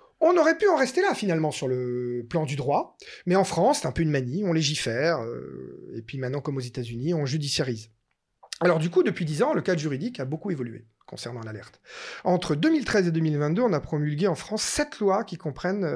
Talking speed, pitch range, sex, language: 220 wpm, 135-225 Hz, male, French